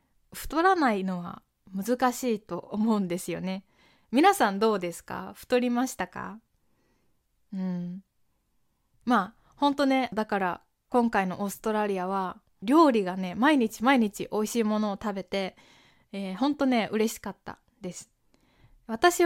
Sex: female